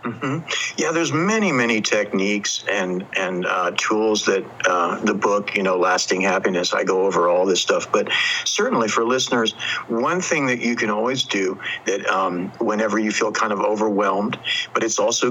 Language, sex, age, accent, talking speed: English, male, 60-79, American, 180 wpm